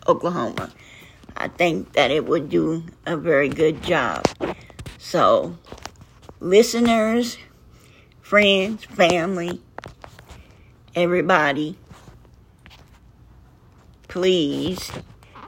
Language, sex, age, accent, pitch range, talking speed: English, female, 60-79, American, 140-190 Hz, 65 wpm